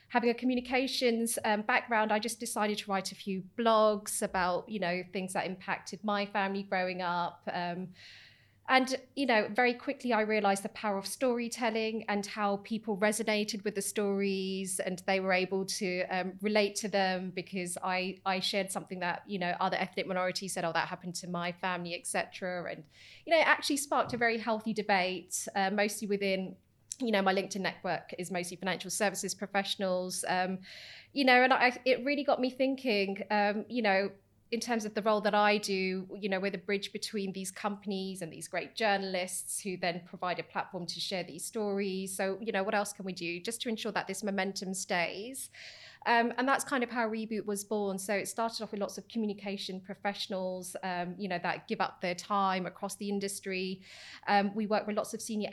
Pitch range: 185-215 Hz